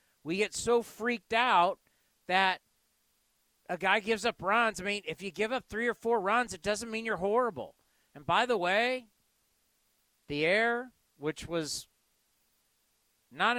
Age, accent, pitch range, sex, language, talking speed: 40-59, American, 180-235 Hz, male, English, 155 wpm